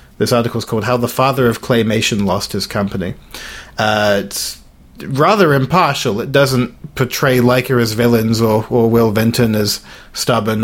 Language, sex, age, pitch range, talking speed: English, male, 40-59, 105-125 Hz, 160 wpm